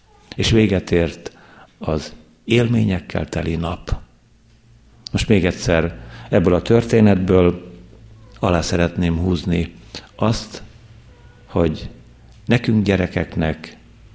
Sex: male